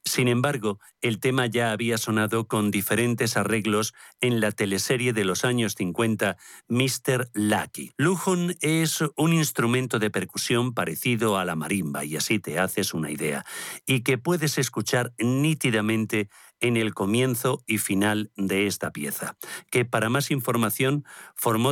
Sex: male